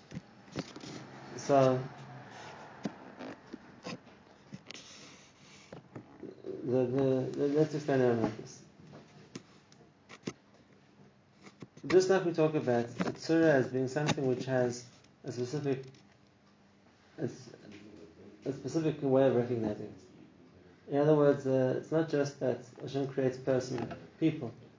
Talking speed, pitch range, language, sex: 100 wpm, 120-145 Hz, English, male